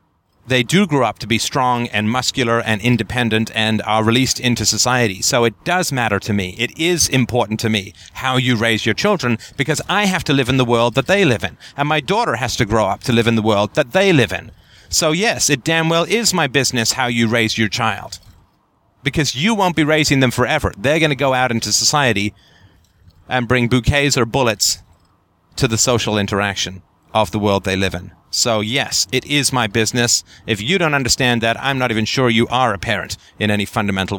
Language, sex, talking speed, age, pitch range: English, male, 220 wpm, 30-49, 100-130 Hz